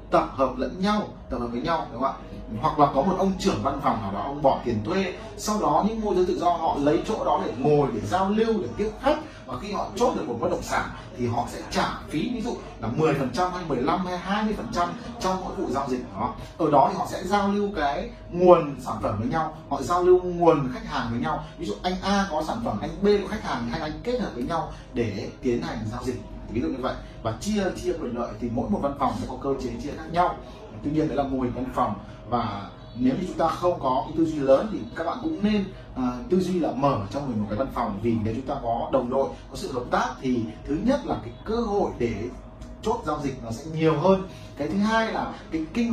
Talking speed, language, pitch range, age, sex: 265 wpm, Vietnamese, 125-190 Hz, 30-49, male